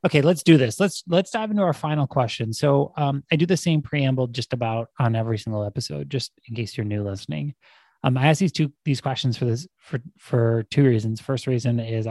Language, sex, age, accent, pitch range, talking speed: English, male, 30-49, American, 110-135 Hz, 230 wpm